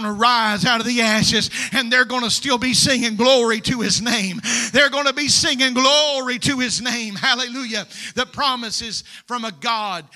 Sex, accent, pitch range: male, American, 205-245 Hz